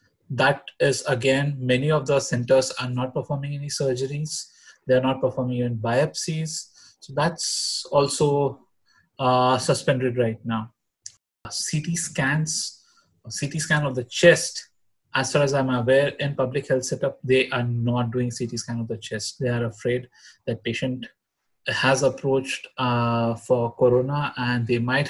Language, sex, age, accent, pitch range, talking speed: English, male, 20-39, Indian, 125-145 Hz, 150 wpm